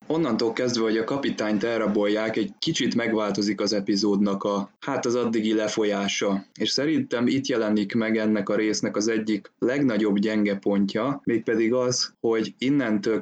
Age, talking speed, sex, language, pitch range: 20-39, 150 wpm, male, Hungarian, 105-115 Hz